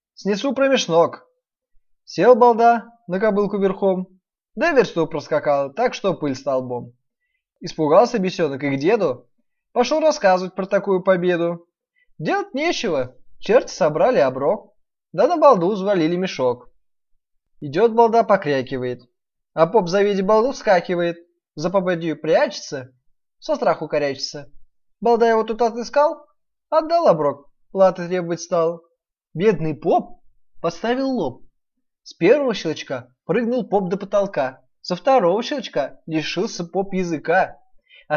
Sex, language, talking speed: male, Russian, 120 wpm